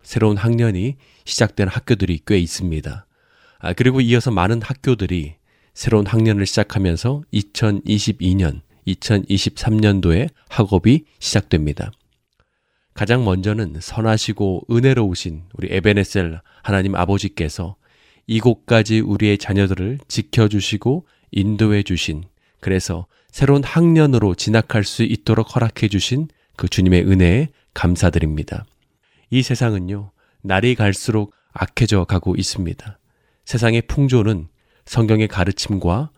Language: Korean